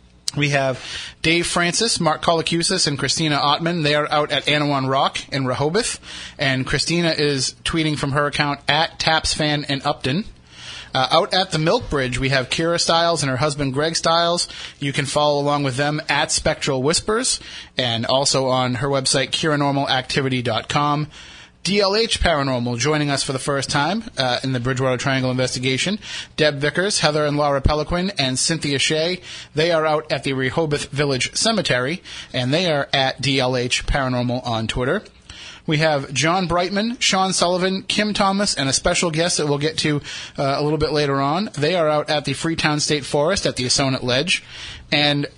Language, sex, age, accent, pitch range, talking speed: English, male, 30-49, American, 135-160 Hz, 175 wpm